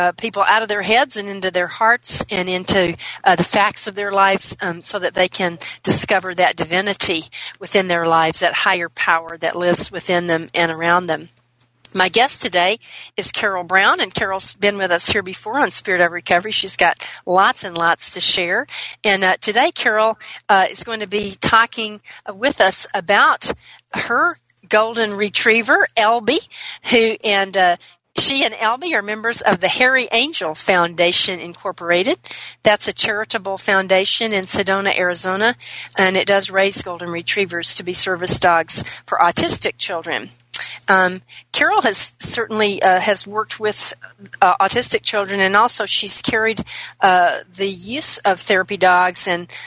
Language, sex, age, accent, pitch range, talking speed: English, female, 40-59, American, 175-215 Hz, 165 wpm